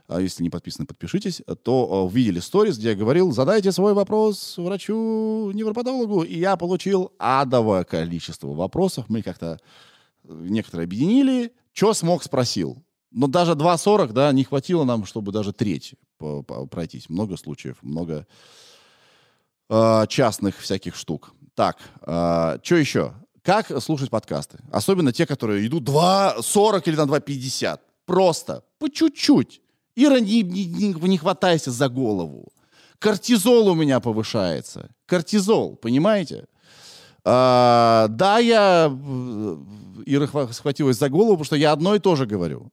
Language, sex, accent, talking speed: Russian, male, native, 120 wpm